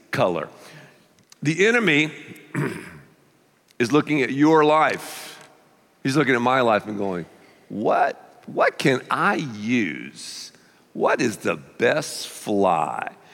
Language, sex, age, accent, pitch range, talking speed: English, male, 50-69, American, 100-155 Hz, 110 wpm